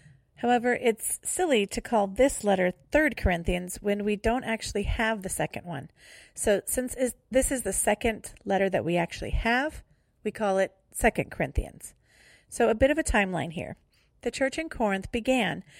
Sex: female